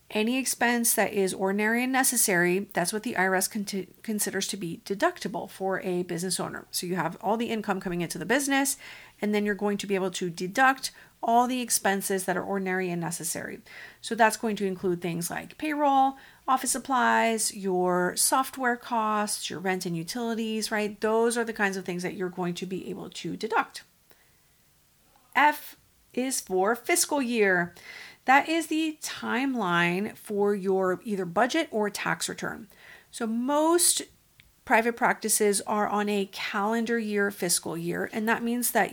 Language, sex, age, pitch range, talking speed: English, female, 40-59, 190-235 Hz, 170 wpm